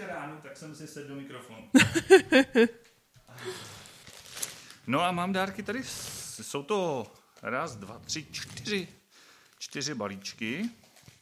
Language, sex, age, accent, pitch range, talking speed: Czech, male, 30-49, native, 110-145 Hz, 105 wpm